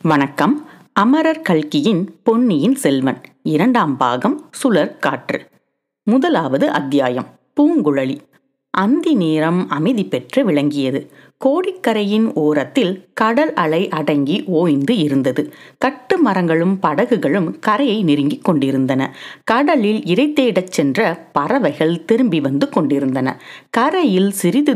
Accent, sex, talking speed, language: native, female, 90 wpm, Tamil